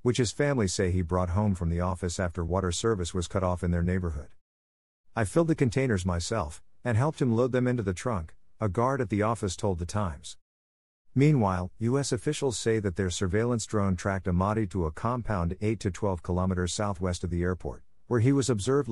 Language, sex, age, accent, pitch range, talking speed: English, male, 50-69, American, 90-115 Hz, 205 wpm